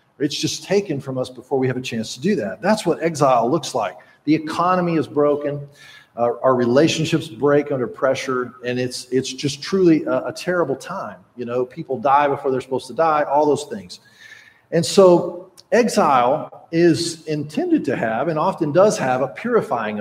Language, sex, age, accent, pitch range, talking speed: English, male, 40-59, American, 130-170 Hz, 185 wpm